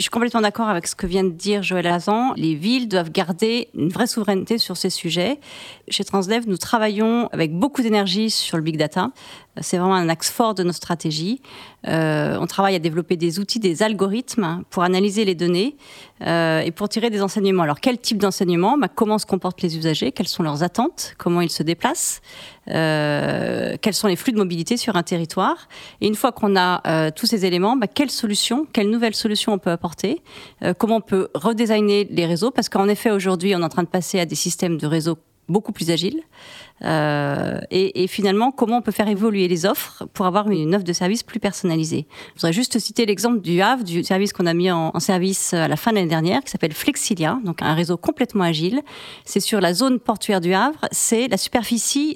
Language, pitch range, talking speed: French, 180-235 Hz, 215 wpm